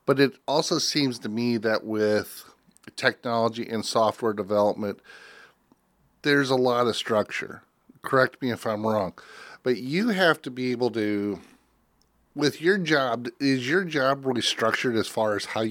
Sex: male